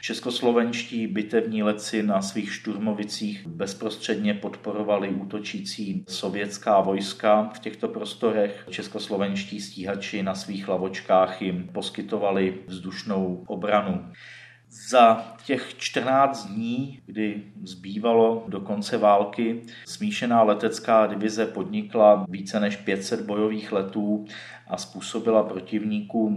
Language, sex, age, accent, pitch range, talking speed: Czech, male, 40-59, native, 95-110 Hz, 100 wpm